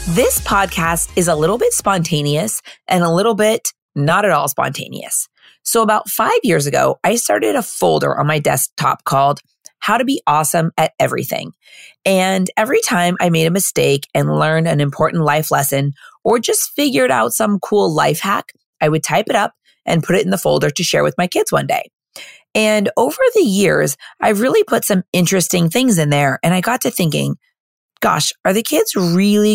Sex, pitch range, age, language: female, 160-215 Hz, 30-49, English